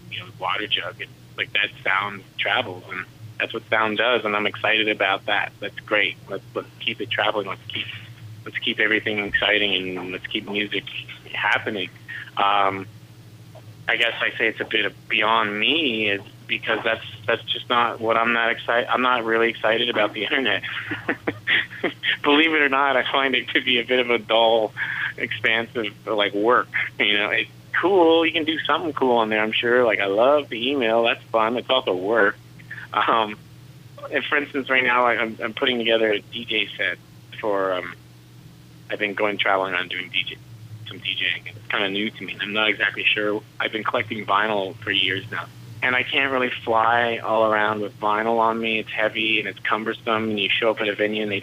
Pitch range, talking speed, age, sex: 105-120 Hz, 200 wpm, 20-39, male